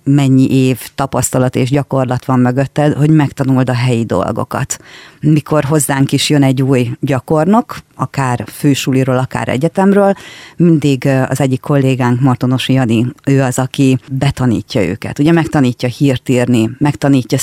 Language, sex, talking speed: Hungarian, female, 135 wpm